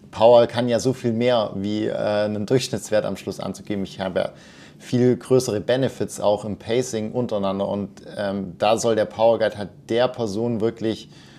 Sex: male